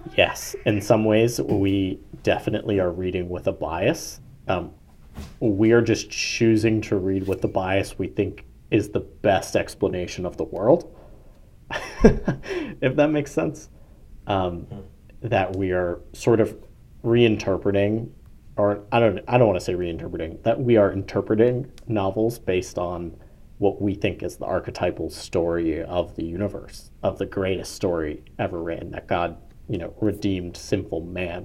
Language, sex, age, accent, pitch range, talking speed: English, male, 40-59, American, 90-110 Hz, 155 wpm